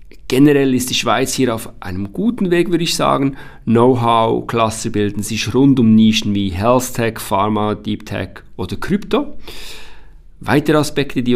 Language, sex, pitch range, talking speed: German, male, 100-125 Hz, 155 wpm